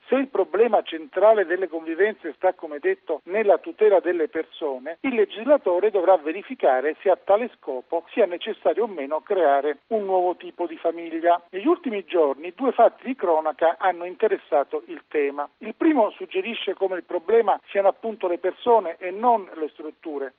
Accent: native